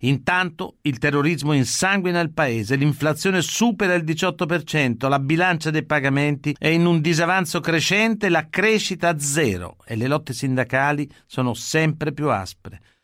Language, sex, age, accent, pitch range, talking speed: Italian, male, 50-69, native, 135-175 Hz, 145 wpm